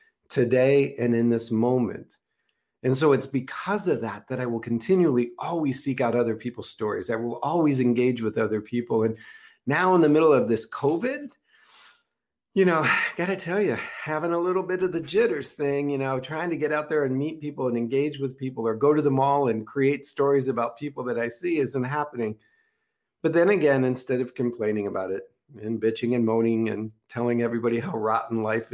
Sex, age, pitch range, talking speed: male, 50-69, 115-155 Hz, 205 wpm